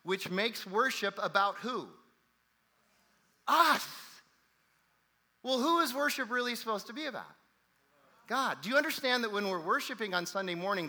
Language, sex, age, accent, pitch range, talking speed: English, male, 40-59, American, 150-195 Hz, 145 wpm